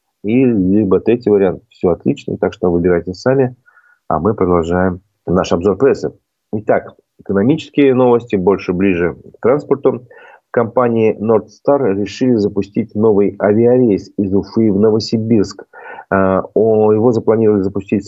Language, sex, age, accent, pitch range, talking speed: Russian, male, 30-49, native, 95-110 Hz, 120 wpm